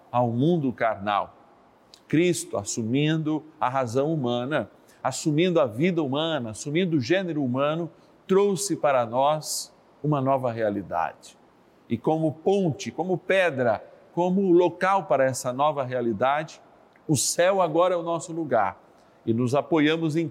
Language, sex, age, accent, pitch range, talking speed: Portuguese, male, 50-69, Brazilian, 130-175 Hz, 130 wpm